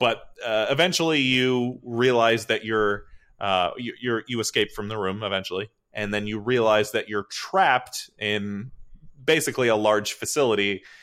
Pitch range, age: 105-125 Hz, 30-49